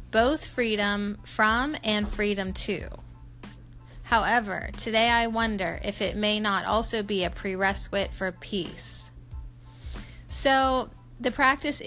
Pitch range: 185-225 Hz